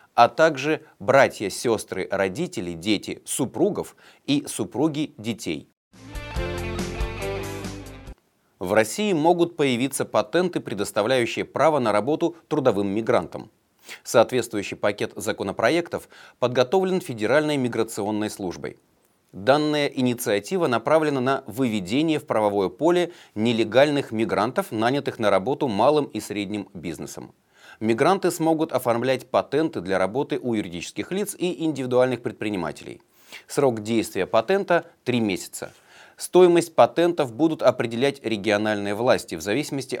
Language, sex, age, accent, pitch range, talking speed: Russian, male, 30-49, native, 110-155 Hz, 105 wpm